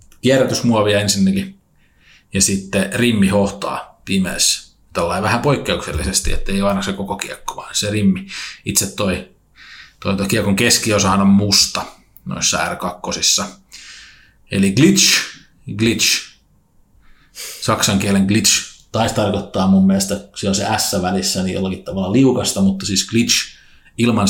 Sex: male